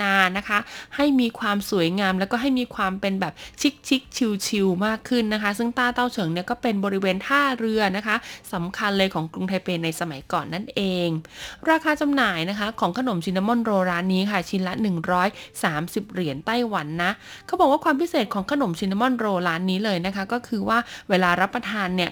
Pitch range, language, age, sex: 190-250 Hz, Thai, 20-39, female